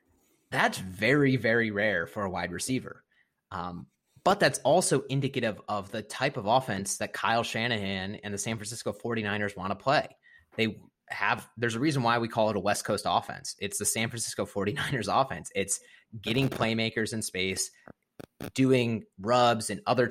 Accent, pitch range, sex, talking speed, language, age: American, 105-130 Hz, male, 170 wpm, English, 30-49